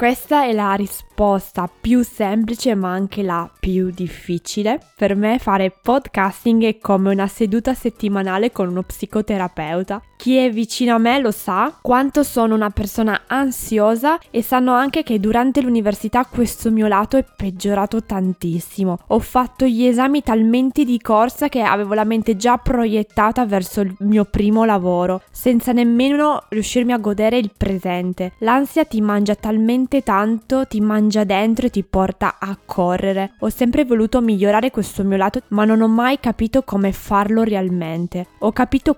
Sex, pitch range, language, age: female, 195-240 Hz, Italian, 20-39